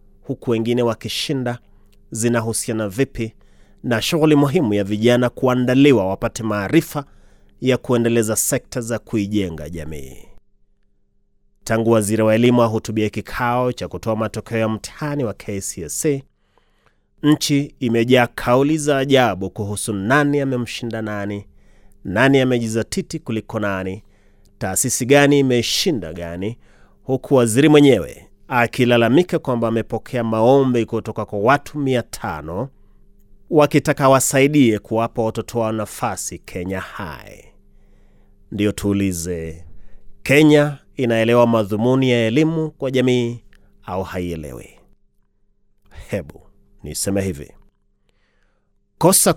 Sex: male